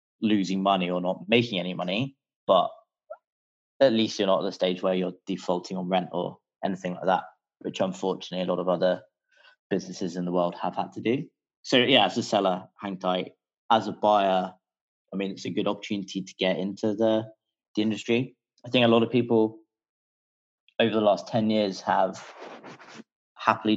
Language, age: English, 20-39